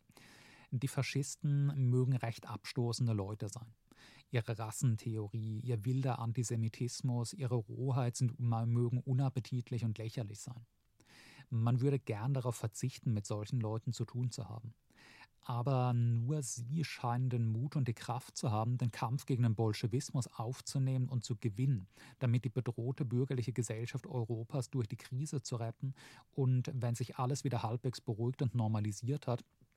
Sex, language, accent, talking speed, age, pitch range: male, German, German, 145 wpm, 40-59, 115-130 Hz